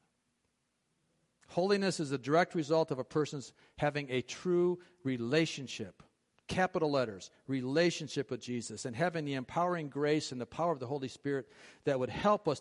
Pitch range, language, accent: 130-170 Hz, English, American